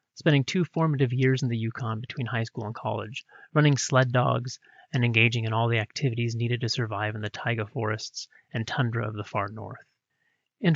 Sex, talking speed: male, 195 wpm